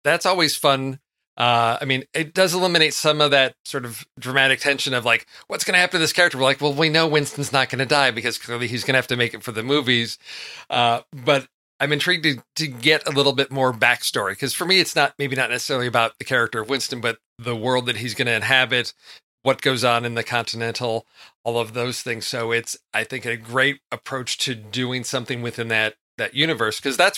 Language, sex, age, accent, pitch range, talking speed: English, male, 40-59, American, 115-140 Hz, 235 wpm